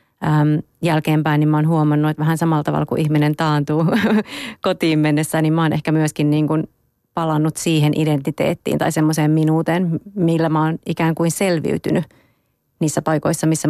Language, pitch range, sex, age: Finnish, 155-165 Hz, female, 30-49